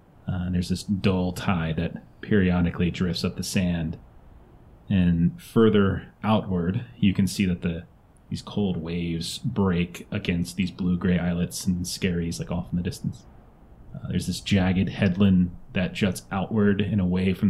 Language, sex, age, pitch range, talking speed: English, male, 30-49, 90-105 Hz, 160 wpm